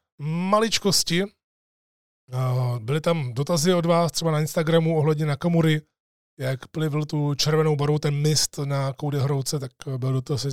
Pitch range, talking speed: 125-145 Hz, 135 wpm